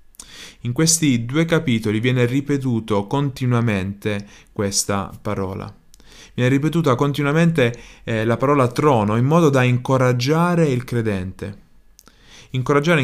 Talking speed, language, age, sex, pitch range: 105 wpm, Italian, 20-39, male, 100-135 Hz